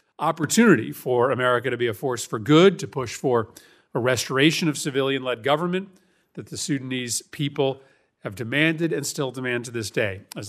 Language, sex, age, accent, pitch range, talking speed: English, male, 40-59, American, 120-155 Hz, 170 wpm